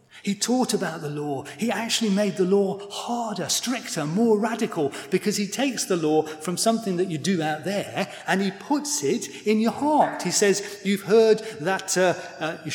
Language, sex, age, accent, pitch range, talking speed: English, male, 40-59, British, 155-220 Hz, 195 wpm